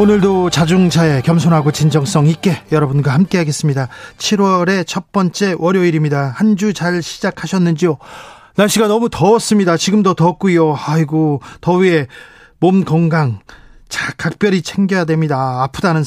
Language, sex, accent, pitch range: Korean, male, native, 150-185 Hz